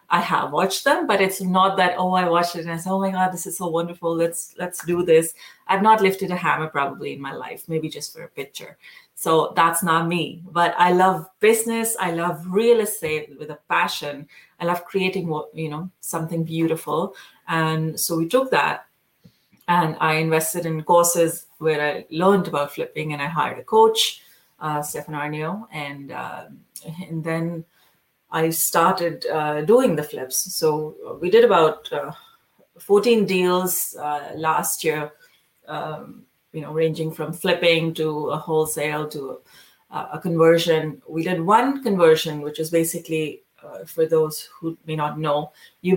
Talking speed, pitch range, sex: 175 wpm, 155-185 Hz, female